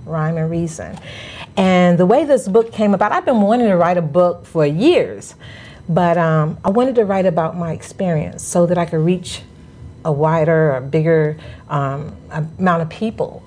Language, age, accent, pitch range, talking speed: English, 40-59, American, 155-195 Hz, 185 wpm